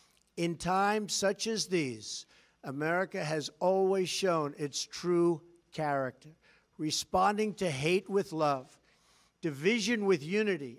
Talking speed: 110 wpm